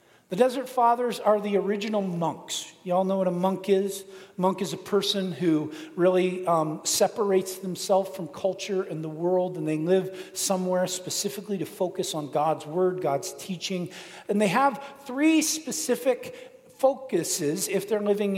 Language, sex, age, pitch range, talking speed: English, male, 40-59, 185-230 Hz, 165 wpm